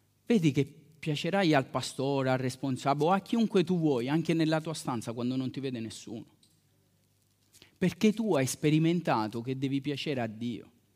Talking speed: 165 wpm